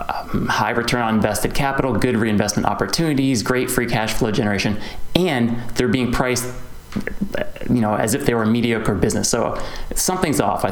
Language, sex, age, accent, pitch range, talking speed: English, male, 30-49, American, 110-130 Hz, 175 wpm